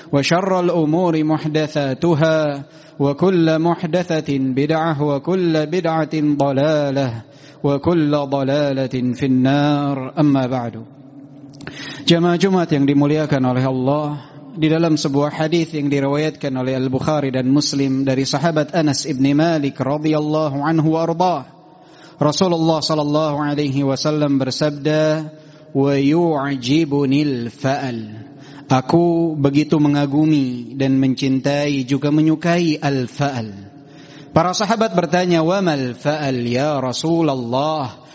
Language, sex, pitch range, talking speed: Indonesian, male, 135-160 Hz, 85 wpm